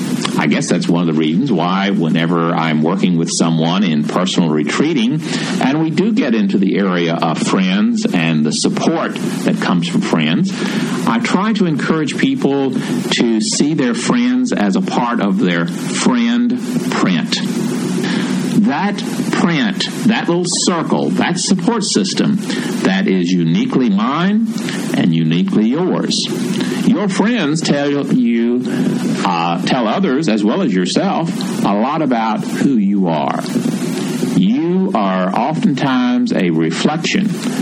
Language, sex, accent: English, male, American